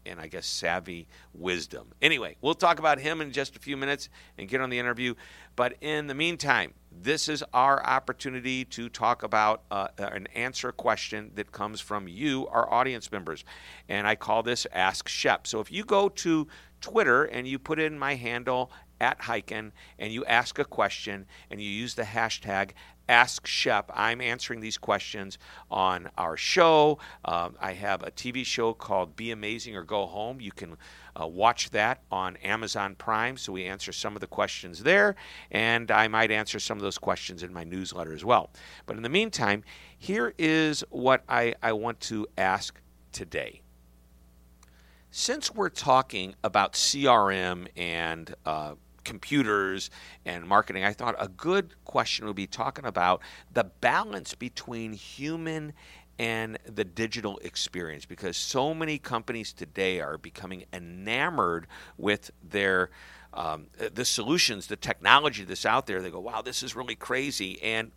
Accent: American